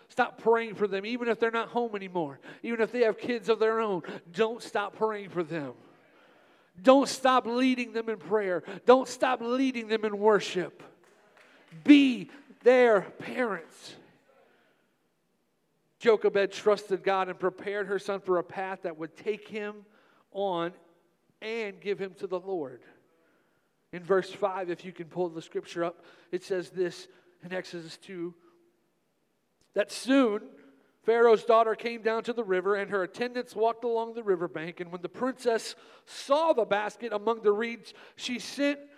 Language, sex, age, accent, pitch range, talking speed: English, male, 50-69, American, 175-230 Hz, 160 wpm